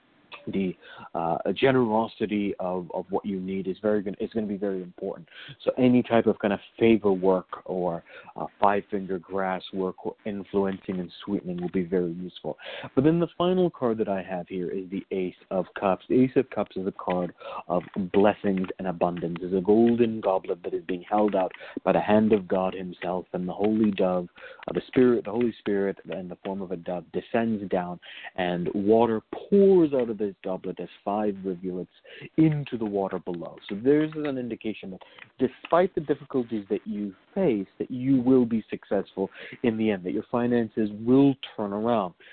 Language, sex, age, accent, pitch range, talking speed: English, male, 40-59, American, 95-115 Hz, 195 wpm